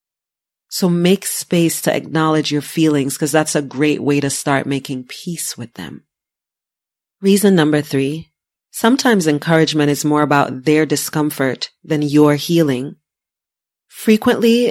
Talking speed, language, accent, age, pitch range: 130 wpm, English, American, 30-49, 145-170 Hz